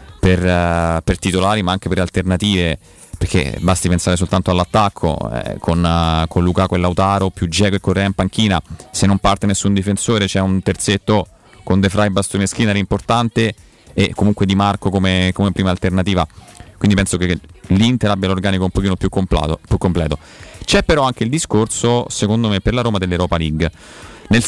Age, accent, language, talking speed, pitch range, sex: 30-49, native, Italian, 170 wpm, 90-110 Hz, male